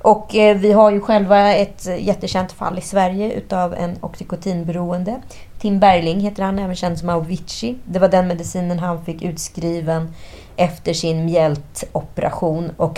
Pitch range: 165-205 Hz